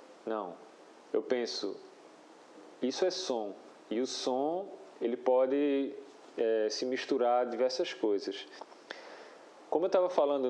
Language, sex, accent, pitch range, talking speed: Portuguese, male, Brazilian, 120-180 Hz, 120 wpm